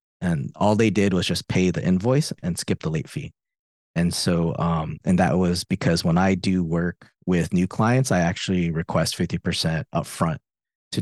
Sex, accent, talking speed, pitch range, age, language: male, American, 190 wpm, 85-105 Hz, 30-49, English